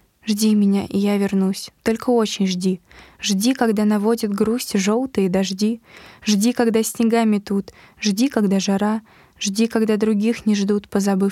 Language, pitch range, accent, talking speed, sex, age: Russian, 200-230 Hz, native, 145 wpm, female, 20-39